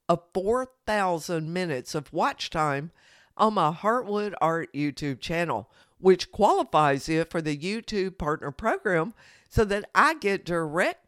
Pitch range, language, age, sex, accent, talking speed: 165-230 Hz, English, 50-69, female, American, 135 wpm